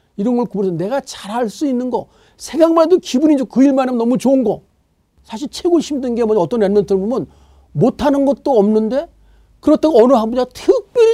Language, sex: Korean, male